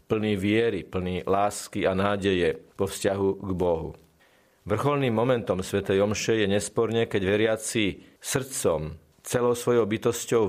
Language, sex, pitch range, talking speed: Slovak, male, 95-120 Hz, 125 wpm